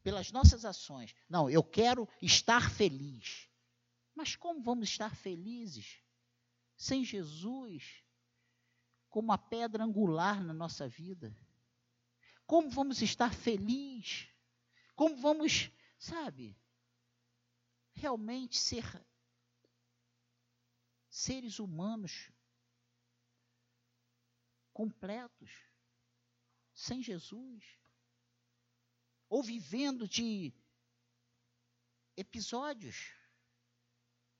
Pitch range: 120-200 Hz